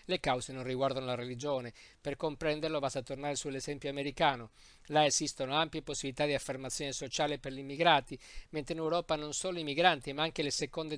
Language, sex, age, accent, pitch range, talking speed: Italian, male, 50-69, native, 135-155 Hz, 180 wpm